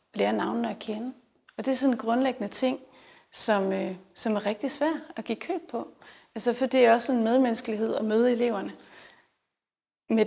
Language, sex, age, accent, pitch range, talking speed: Danish, female, 30-49, native, 215-255 Hz, 195 wpm